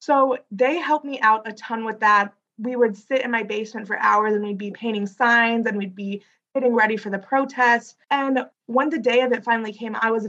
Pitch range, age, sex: 205-245 Hz, 20-39, female